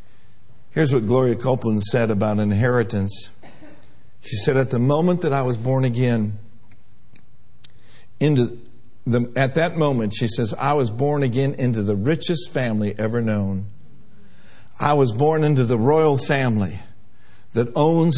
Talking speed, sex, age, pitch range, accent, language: 140 wpm, male, 50-69, 105-135 Hz, American, English